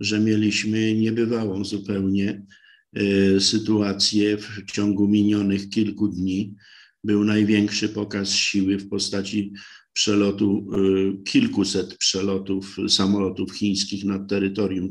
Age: 50-69